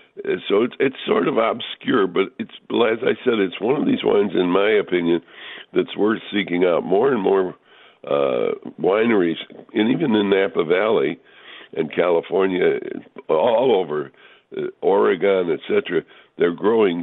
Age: 60-79